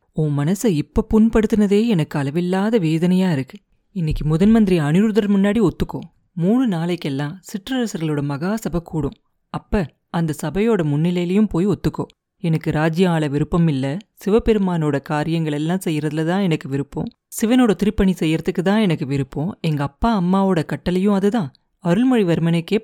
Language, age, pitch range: Tamil, 30-49, 155-205 Hz